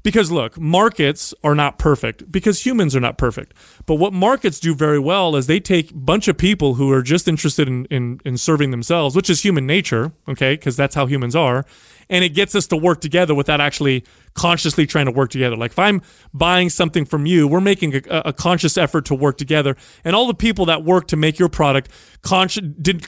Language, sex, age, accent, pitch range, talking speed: English, male, 30-49, American, 145-190 Hz, 215 wpm